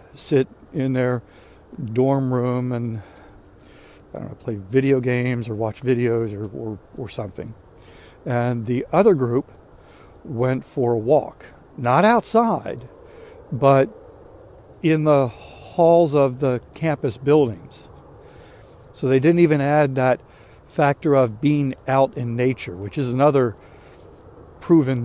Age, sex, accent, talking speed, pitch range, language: 60-79, male, American, 120 wpm, 115-145 Hz, English